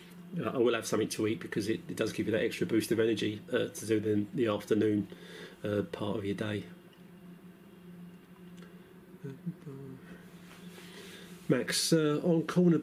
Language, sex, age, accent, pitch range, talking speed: English, male, 40-59, British, 115-180 Hz, 150 wpm